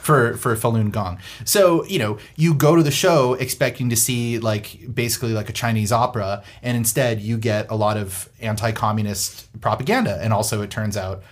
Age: 30-49